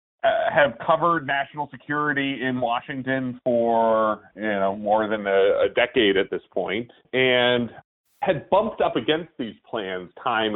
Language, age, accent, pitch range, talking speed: English, 30-49, American, 100-145 Hz, 150 wpm